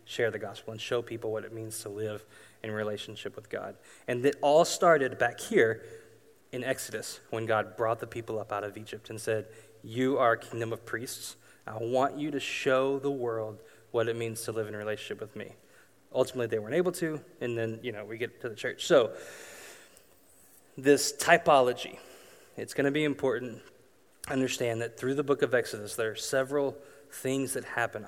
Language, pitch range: English, 110-135 Hz